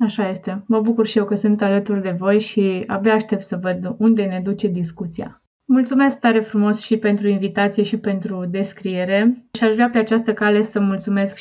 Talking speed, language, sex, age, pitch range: 195 wpm, Romanian, female, 20-39, 185-220 Hz